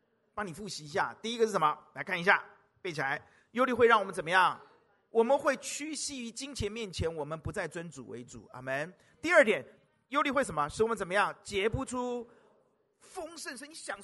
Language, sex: Chinese, male